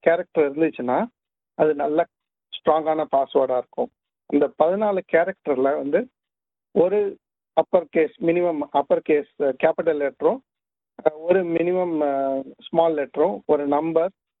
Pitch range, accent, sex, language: 150-195 Hz, native, male, Tamil